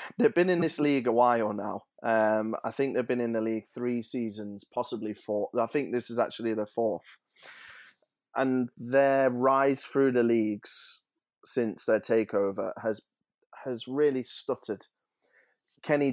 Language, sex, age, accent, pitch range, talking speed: English, male, 20-39, British, 110-130 Hz, 155 wpm